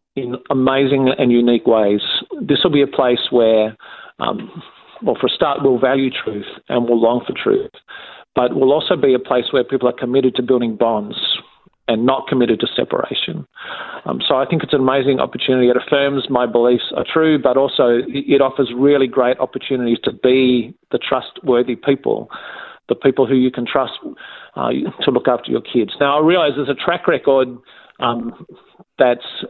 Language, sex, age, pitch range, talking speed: English, male, 40-59, 125-150 Hz, 180 wpm